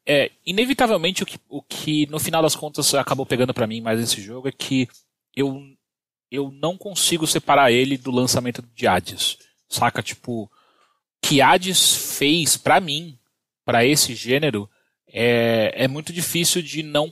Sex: male